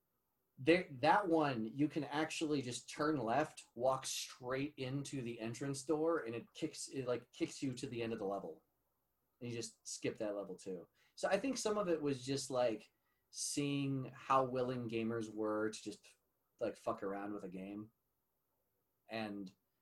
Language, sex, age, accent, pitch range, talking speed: English, male, 30-49, American, 110-140 Hz, 175 wpm